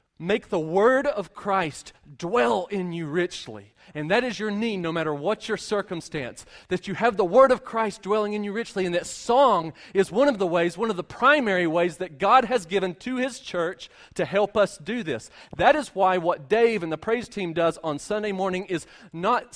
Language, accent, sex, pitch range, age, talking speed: English, American, male, 135-205 Hz, 40-59, 215 wpm